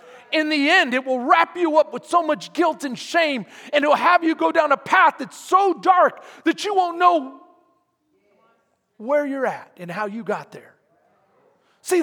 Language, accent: English, American